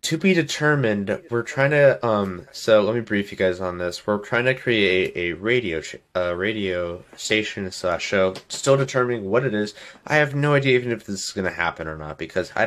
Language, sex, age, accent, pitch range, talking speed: English, male, 20-39, American, 85-110 Hz, 225 wpm